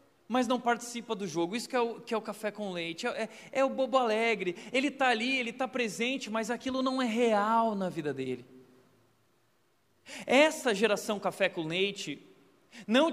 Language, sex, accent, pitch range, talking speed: Portuguese, male, Brazilian, 180-245 Hz, 175 wpm